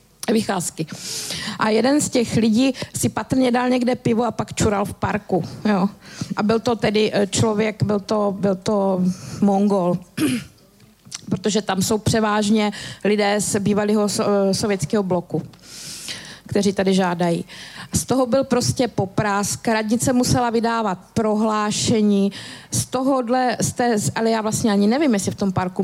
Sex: female